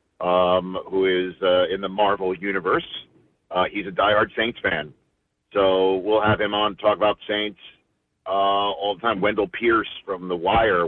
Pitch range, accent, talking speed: 100-120 Hz, American, 170 wpm